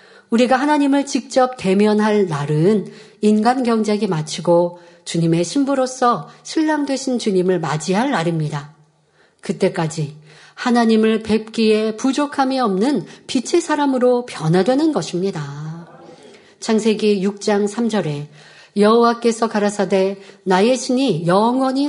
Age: 40-59